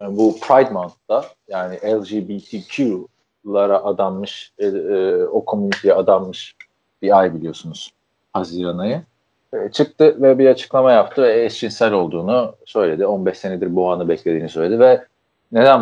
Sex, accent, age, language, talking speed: male, native, 40-59, Turkish, 125 wpm